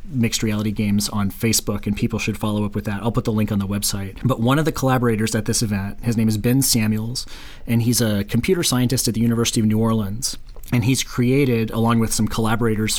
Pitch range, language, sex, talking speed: 105-125 Hz, English, male, 230 wpm